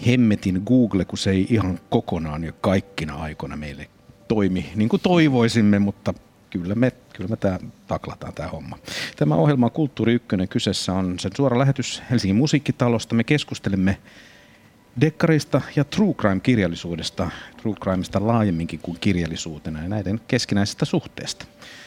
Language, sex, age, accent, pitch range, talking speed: Finnish, male, 50-69, native, 95-125 Hz, 145 wpm